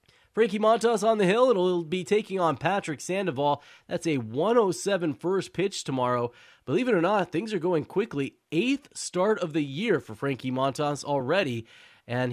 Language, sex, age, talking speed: English, male, 20-39, 175 wpm